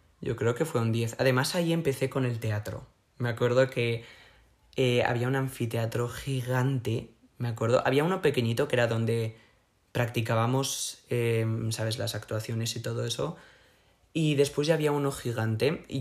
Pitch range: 115-135 Hz